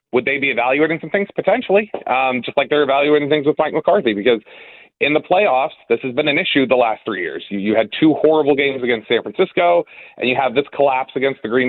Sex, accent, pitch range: male, American, 115-150 Hz